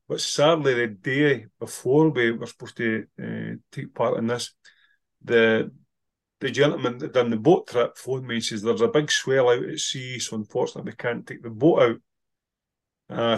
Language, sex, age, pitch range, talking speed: English, male, 30-49, 110-120 Hz, 190 wpm